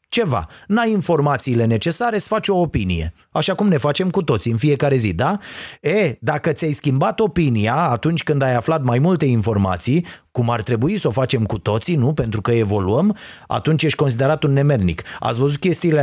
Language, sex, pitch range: Romanian, male, 120-200 Hz